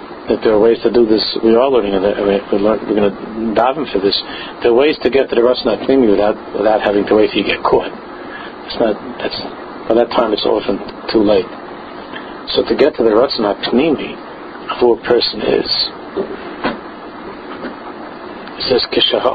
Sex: male